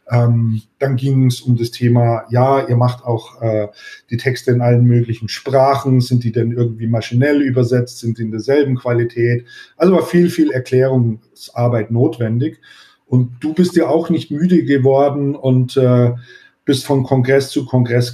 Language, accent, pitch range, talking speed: German, German, 115-130 Hz, 165 wpm